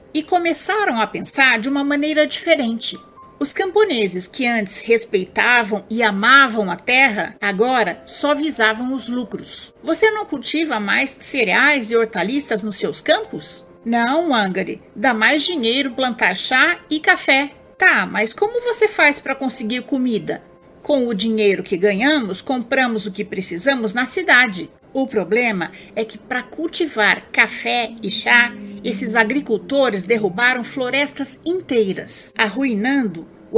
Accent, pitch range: Brazilian, 210-280 Hz